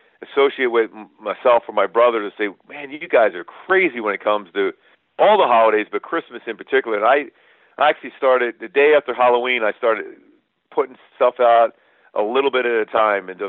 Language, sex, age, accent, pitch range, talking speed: English, male, 50-69, American, 110-135 Hz, 195 wpm